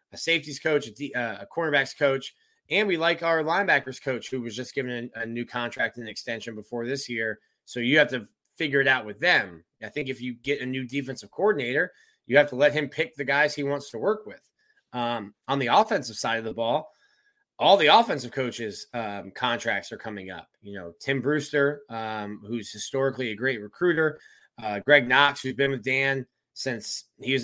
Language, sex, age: English, male, 20-39